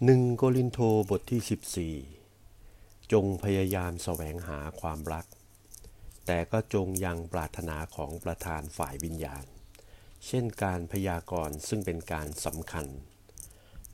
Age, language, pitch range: 60-79, Thai, 90-110 Hz